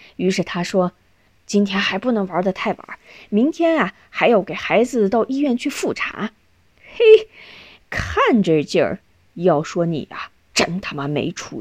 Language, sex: Chinese, female